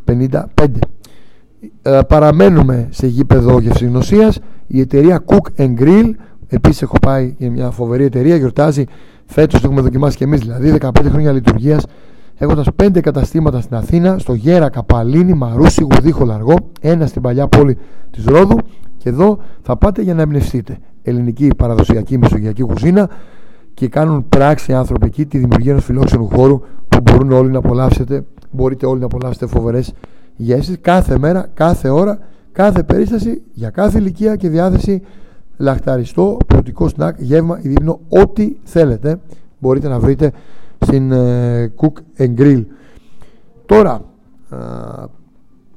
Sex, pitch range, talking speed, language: male, 125-165 Hz, 130 wpm, Greek